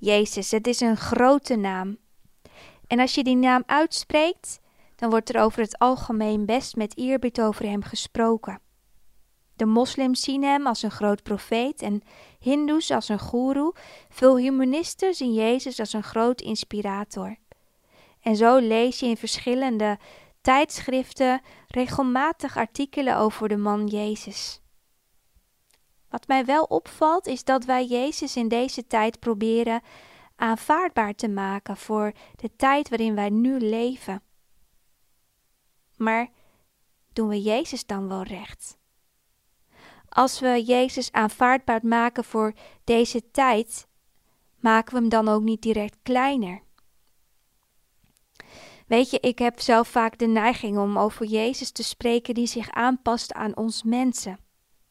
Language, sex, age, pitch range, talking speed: Dutch, female, 20-39, 220-255 Hz, 135 wpm